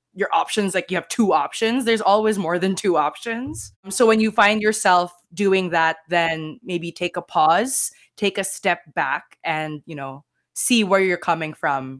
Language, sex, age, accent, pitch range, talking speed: English, female, 20-39, Filipino, 165-225 Hz, 185 wpm